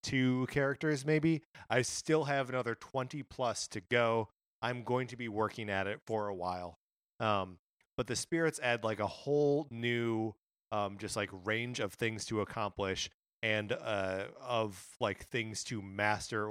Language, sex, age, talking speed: English, male, 30-49, 165 wpm